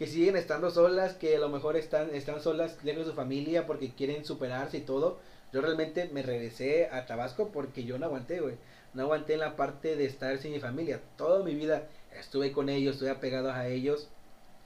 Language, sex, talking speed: Spanish, male, 210 wpm